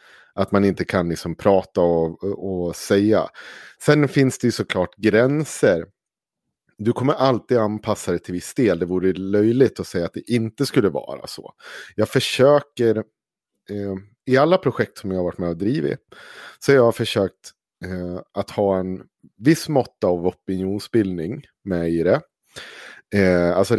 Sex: male